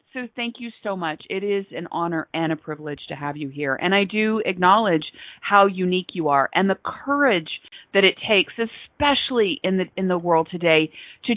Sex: female